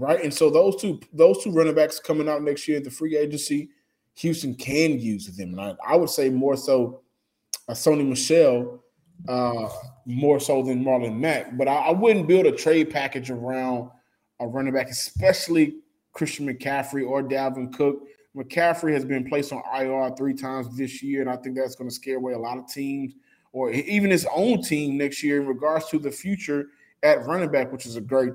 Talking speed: 205 wpm